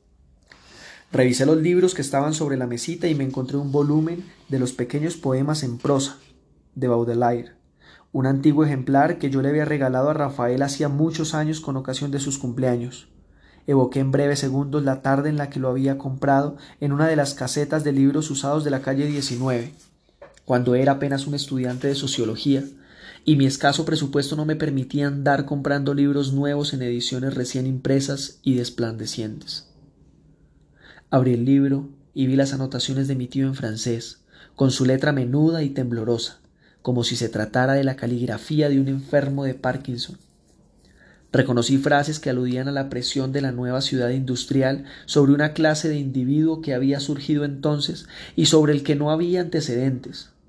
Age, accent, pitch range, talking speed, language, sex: 20-39, Colombian, 125-145 Hz, 170 wpm, Spanish, male